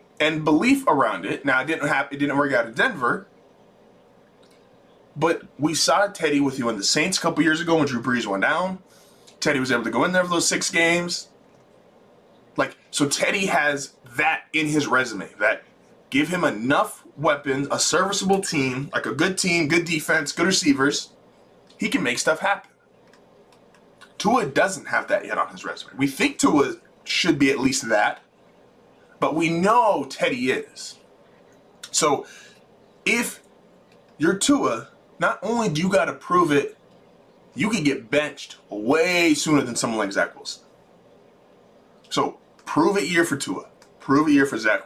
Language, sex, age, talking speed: English, male, 20-39, 170 wpm